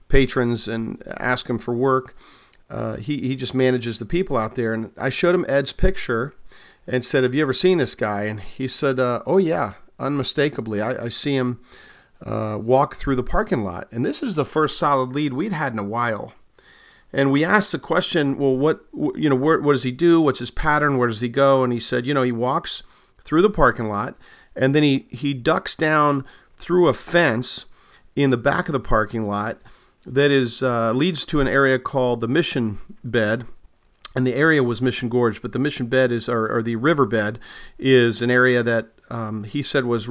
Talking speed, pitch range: 210 wpm, 120-145 Hz